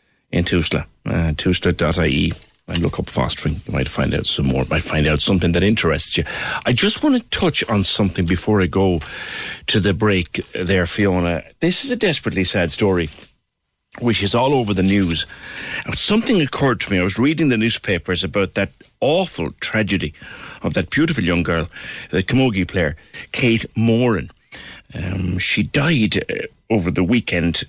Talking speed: 165 wpm